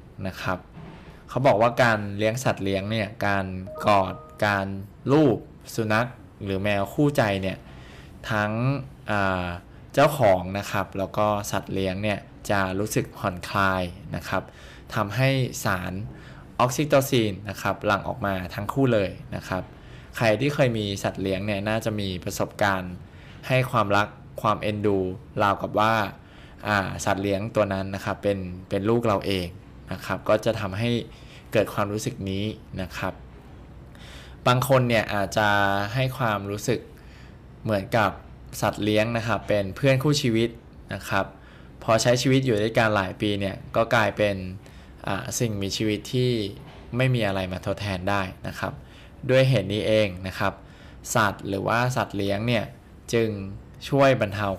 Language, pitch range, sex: Thai, 95-115 Hz, male